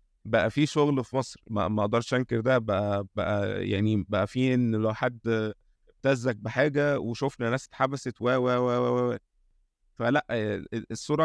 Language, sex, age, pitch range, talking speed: Arabic, male, 20-39, 110-135 Hz, 150 wpm